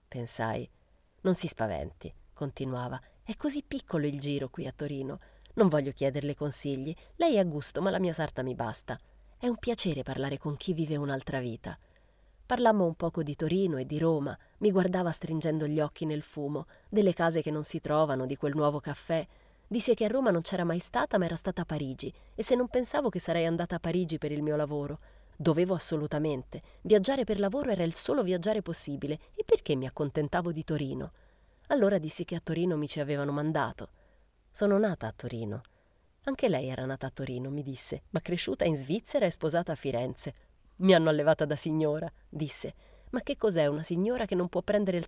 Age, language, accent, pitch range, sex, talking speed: 30-49, Italian, native, 145-185 Hz, female, 195 wpm